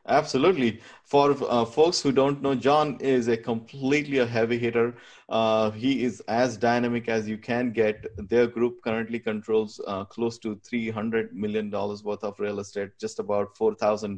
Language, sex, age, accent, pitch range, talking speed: English, male, 20-39, Indian, 100-120 Hz, 170 wpm